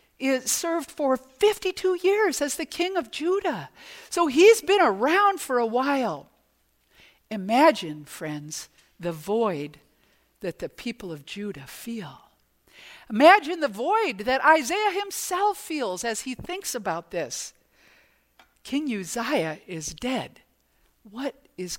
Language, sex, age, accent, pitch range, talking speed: English, female, 60-79, American, 190-315 Hz, 120 wpm